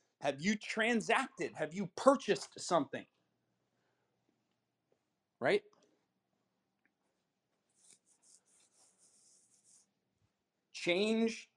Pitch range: 145-225 Hz